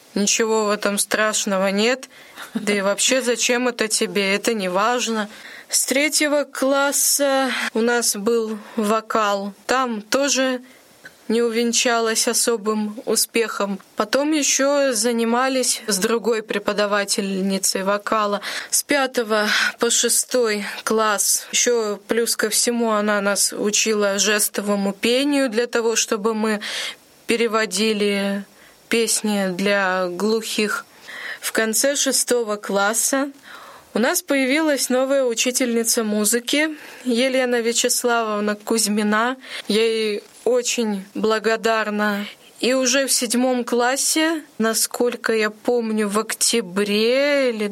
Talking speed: 105 wpm